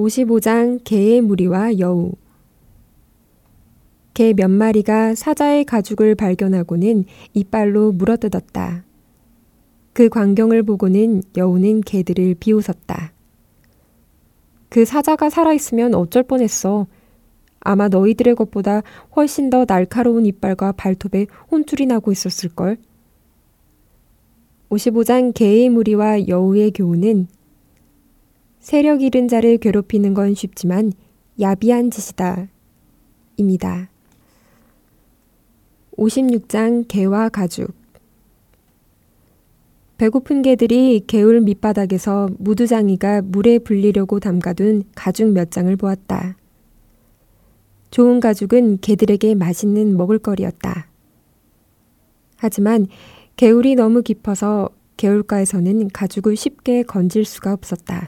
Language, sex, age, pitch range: Korean, female, 20-39, 190-230 Hz